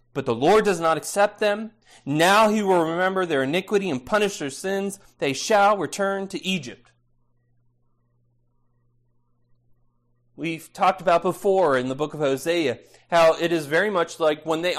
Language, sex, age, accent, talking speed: English, male, 30-49, American, 160 wpm